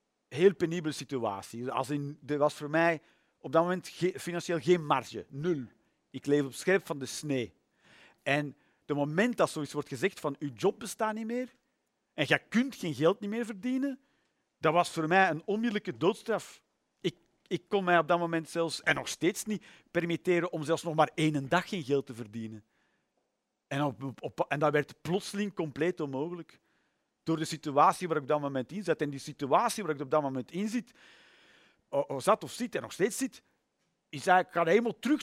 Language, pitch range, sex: Dutch, 150-195 Hz, male